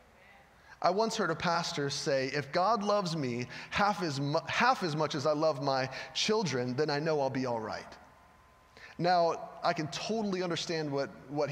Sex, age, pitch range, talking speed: male, 30-49, 145-210 Hz, 170 wpm